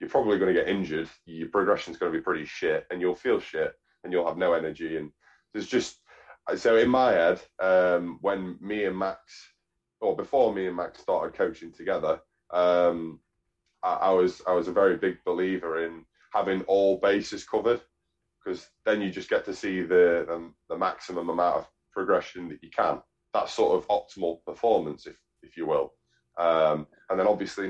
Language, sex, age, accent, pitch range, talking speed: English, male, 20-39, British, 85-115 Hz, 190 wpm